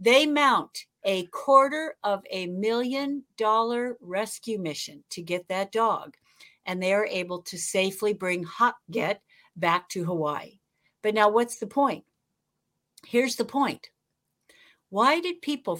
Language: English